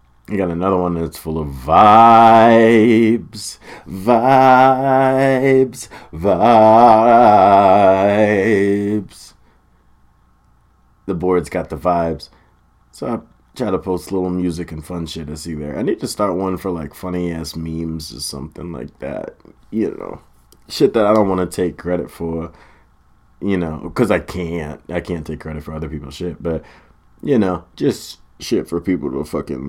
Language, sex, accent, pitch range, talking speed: English, male, American, 80-100 Hz, 155 wpm